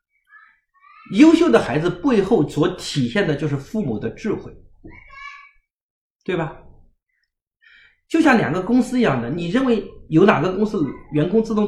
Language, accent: Chinese, native